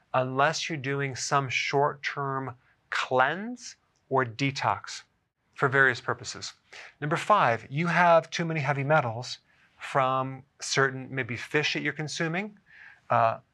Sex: male